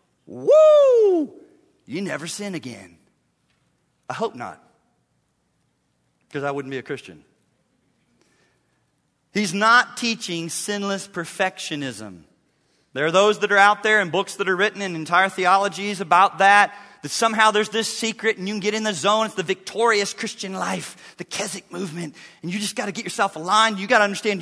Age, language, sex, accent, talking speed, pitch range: 40-59, English, male, American, 165 wpm, 165-225 Hz